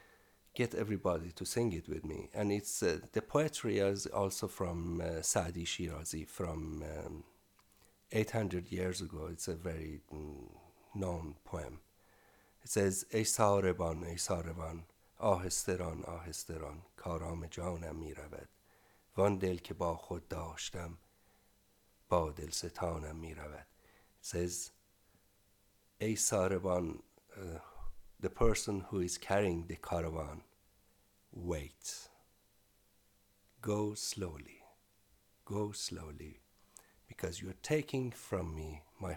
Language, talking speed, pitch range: English, 105 wpm, 85-105 Hz